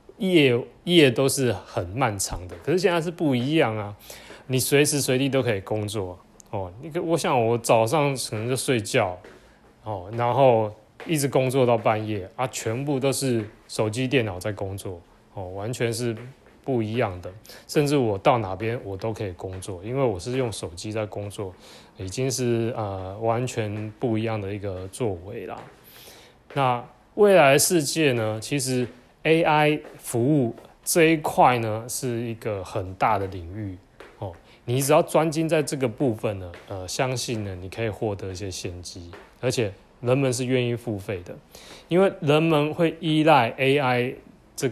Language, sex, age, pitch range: Chinese, male, 20-39, 105-135 Hz